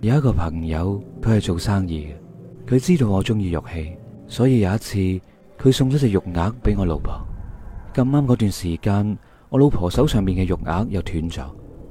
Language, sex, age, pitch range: Chinese, male, 30-49, 85-115 Hz